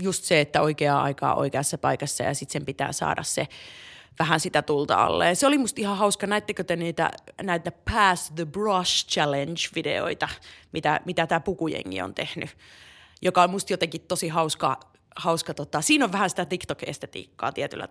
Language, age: Finnish, 30-49